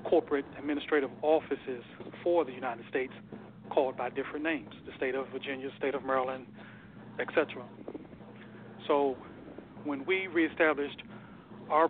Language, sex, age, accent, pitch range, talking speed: English, male, 40-59, American, 135-155 Hz, 120 wpm